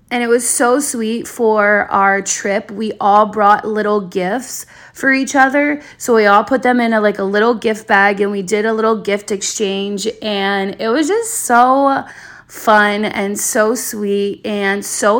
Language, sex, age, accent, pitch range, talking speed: English, female, 20-39, American, 200-245 Hz, 180 wpm